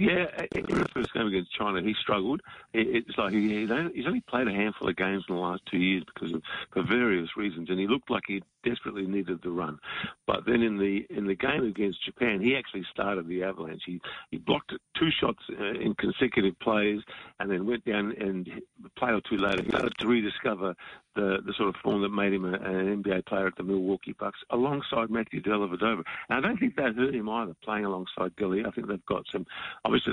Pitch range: 95-115 Hz